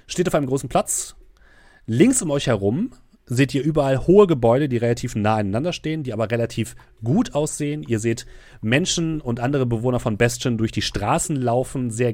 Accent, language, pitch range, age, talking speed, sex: German, German, 110-140 Hz, 30-49, 185 wpm, male